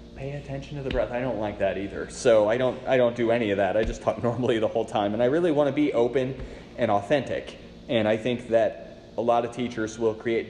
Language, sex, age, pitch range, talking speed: English, male, 30-49, 100-120 Hz, 255 wpm